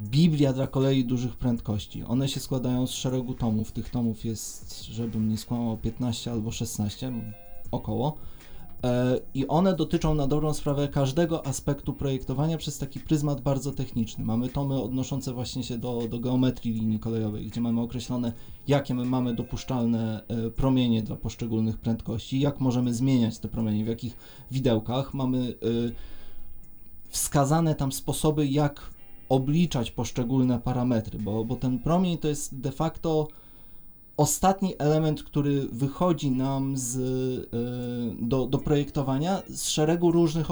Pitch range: 115-140 Hz